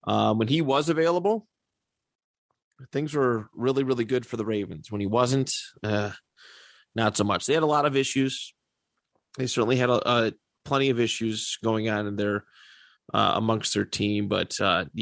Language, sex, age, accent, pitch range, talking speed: English, male, 30-49, American, 105-135 Hz, 170 wpm